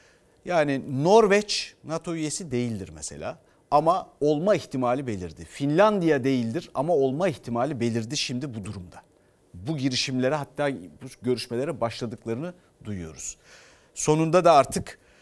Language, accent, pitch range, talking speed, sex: Turkish, native, 120-165 Hz, 115 wpm, male